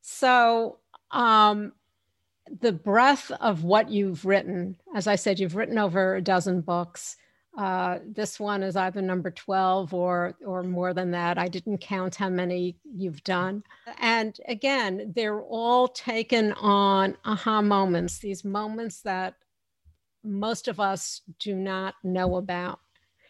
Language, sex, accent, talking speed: English, female, American, 140 wpm